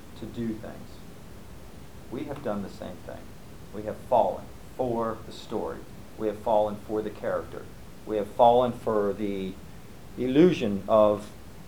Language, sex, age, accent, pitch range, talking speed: English, male, 50-69, American, 105-135 Hz, 145 wpm